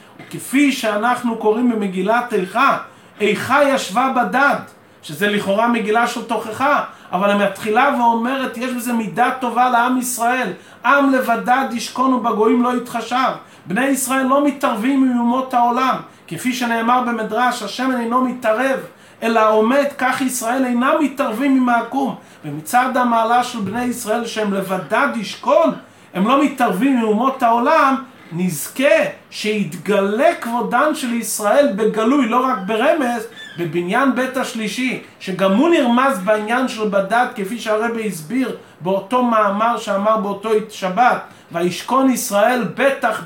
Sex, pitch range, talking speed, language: male, 215-255 Hz, 125 wpm, Hebrew